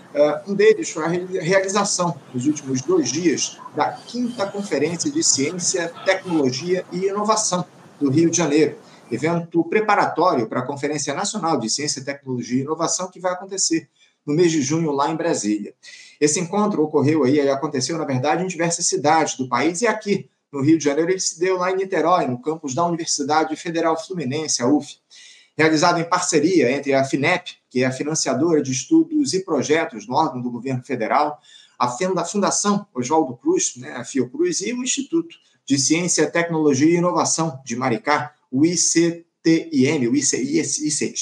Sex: male